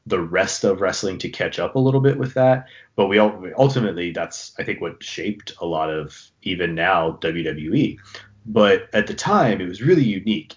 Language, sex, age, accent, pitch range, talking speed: English, male, 30-49, American, 85-110 Hz, 205 wpm